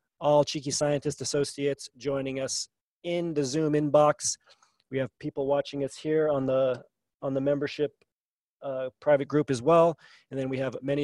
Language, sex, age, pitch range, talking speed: English, male, 30-49, 125-150 Hz, 170 wpm